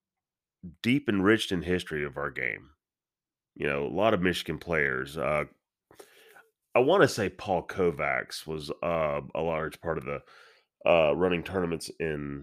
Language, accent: English, American